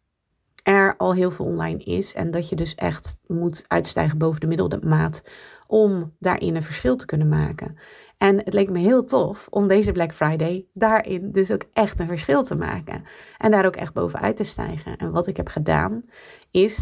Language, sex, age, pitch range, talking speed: Dutch, female, 30-49, 150-190 Hz, 195 wpm